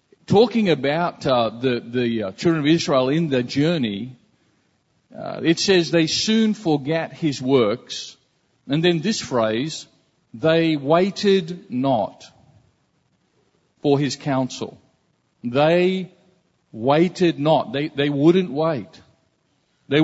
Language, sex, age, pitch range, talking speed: English, male, 50-69, 145-185 Hz, 115 wpm